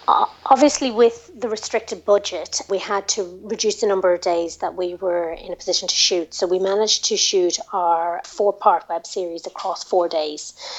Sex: female